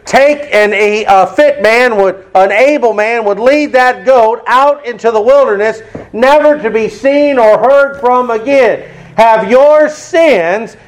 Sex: male